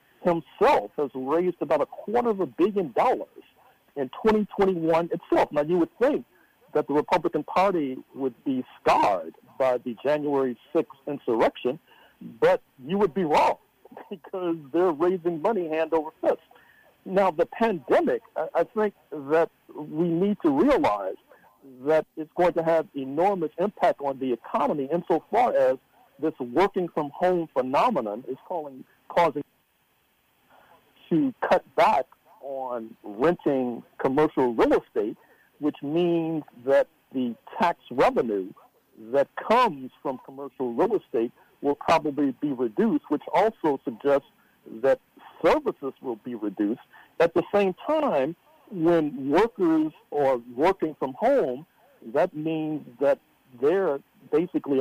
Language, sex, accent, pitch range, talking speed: English, male, American, 140-195 Hz, 125 wpm